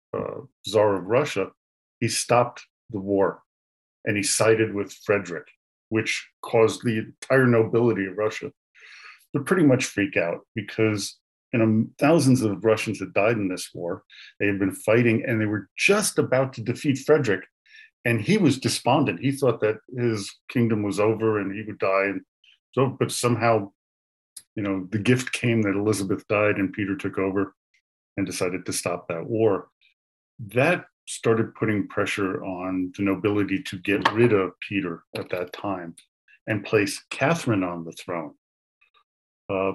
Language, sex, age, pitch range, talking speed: English, male, 40-59, 95-120 Hz, 160 wpm